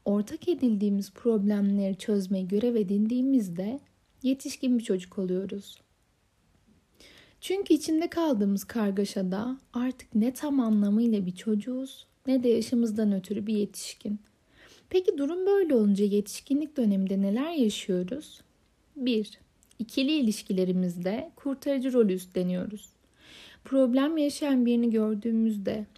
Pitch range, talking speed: 205-265 Hz, 100 wpm